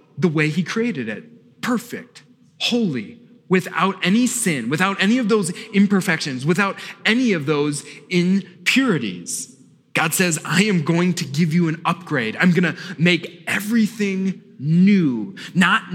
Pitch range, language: 145-185 Hz, English